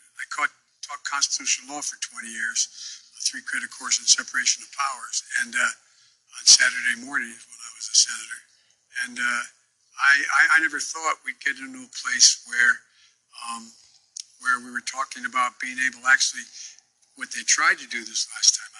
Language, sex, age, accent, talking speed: English, male, 60-79, American, 175 wpm